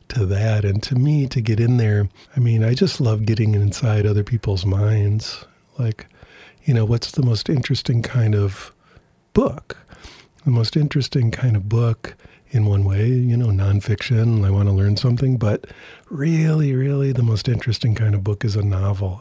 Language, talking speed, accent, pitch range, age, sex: English, 180 wpm, American, 105-125 Hz, 50-69, male